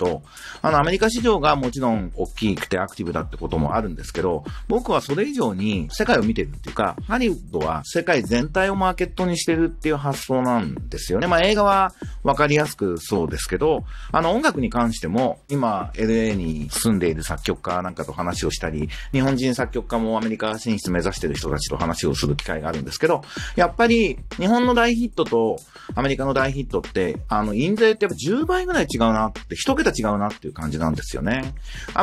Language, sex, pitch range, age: Japanese, male, 100-165 Hz, 40-59